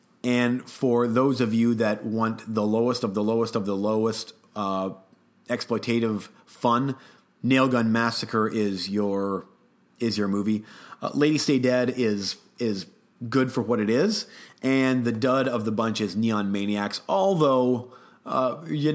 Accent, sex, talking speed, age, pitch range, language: American, male, 155 wpm, 30-49, 100-125 Hz, English